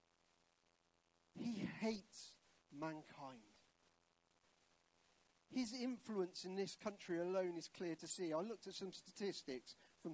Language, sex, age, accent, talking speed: English, male, 40-59, British, 110 wpm